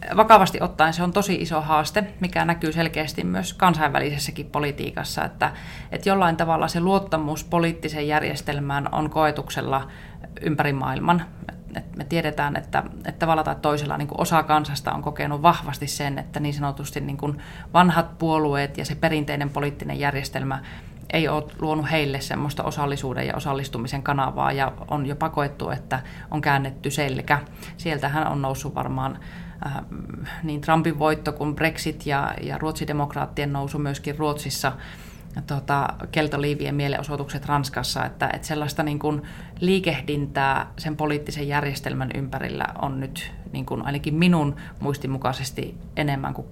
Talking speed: 140 wpm